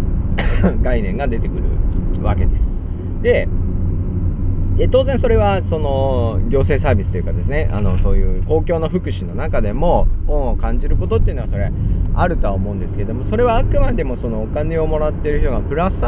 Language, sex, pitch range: Japanese, male, 90-100 Hz